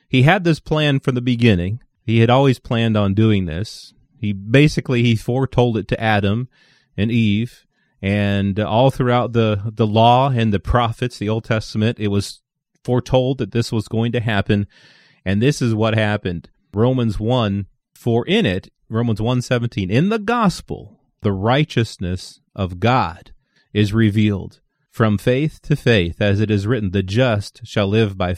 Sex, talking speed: male, 165 wpm